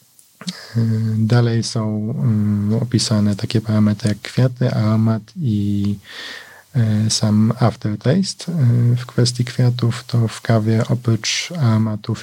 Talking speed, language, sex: 95 wpm, Polish, male